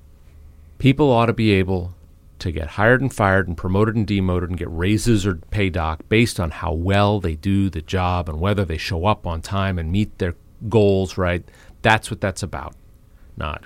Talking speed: 200 wpm